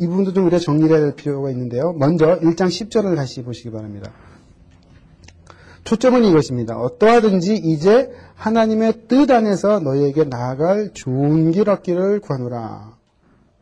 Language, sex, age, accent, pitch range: Korean, male, 30-49, native, 135-205 Hz